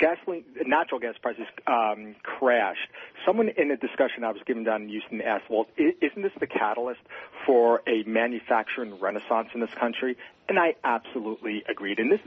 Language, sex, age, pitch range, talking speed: English, male, 40-59, 115-135 Hz, 170 wpm